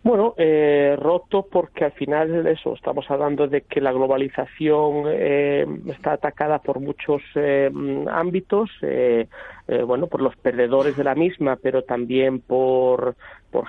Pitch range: 120-145 Hz